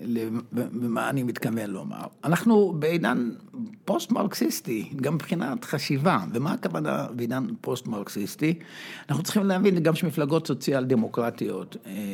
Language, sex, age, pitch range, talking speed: Hebrew, male, 60-79, 120-175 Hz, 110 wpm